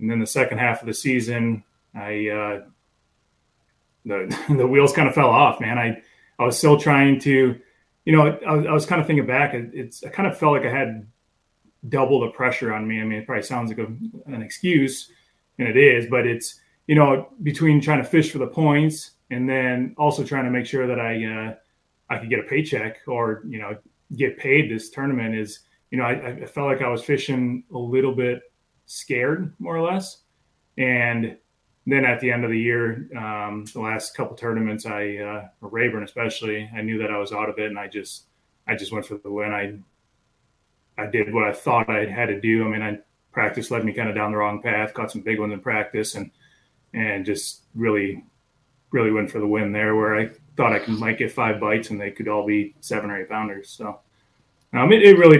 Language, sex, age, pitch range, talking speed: English, male, 20-39, 110-130 Hz, 220 wpm